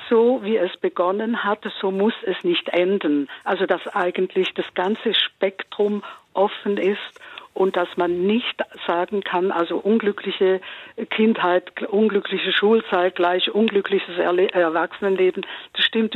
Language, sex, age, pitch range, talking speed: German, female, 50-69, 175-225 Hz, 125 wpm